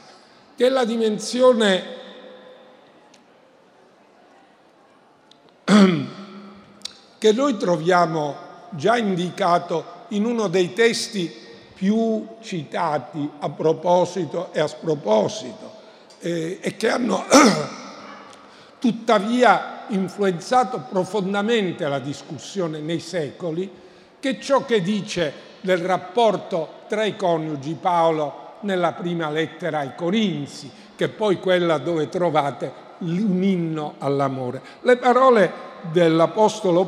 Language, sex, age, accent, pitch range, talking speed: Italian, male, 50-69, native, 160-210 Hz, 90 wpm